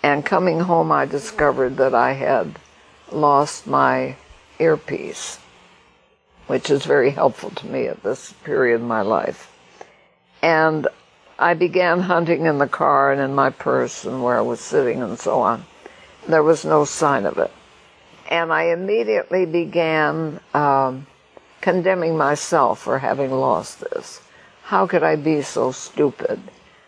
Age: 60-79